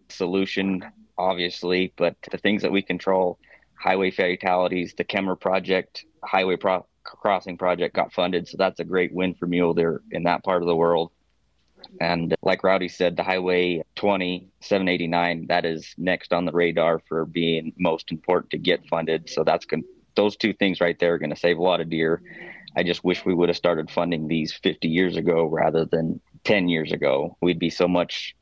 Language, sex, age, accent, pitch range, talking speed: English, male, 20-39, American, 85-95 Hz, 190 wpm